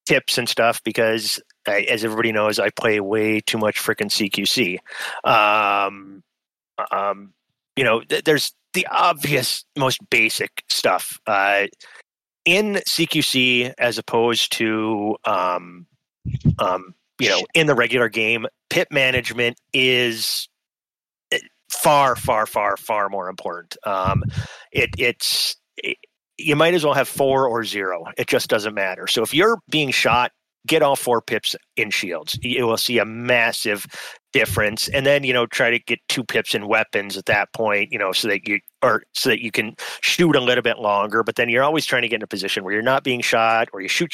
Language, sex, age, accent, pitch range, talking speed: English, male, 30-49, American, 110-145 Hz, 175 wpm